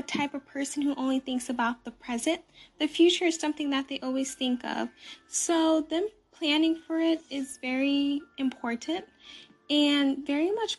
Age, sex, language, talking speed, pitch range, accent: 10-29, female, English, 160 wpm, 265-315 Hz, American